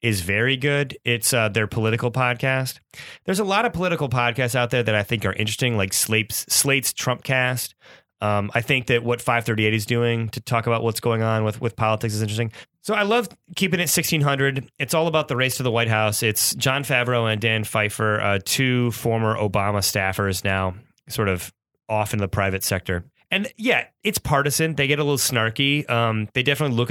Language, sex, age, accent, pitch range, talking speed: English, male, 30-49, American, 110-140 Hz, 205 wpm